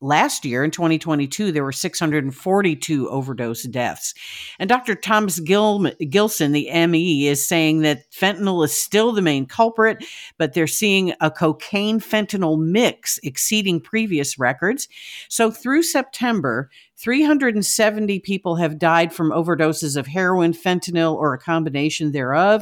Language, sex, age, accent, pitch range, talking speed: English, female, 50-69, American, 150-205 Hz, 130 wpm